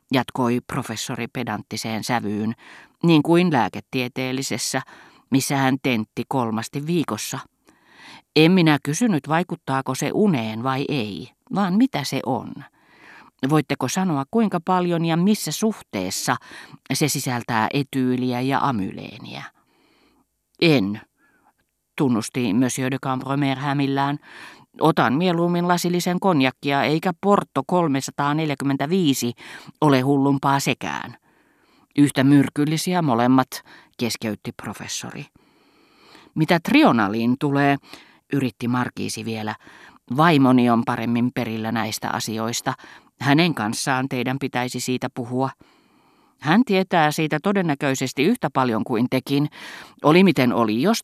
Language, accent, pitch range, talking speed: Finnish, native, 120-155 Hz, 100 wpm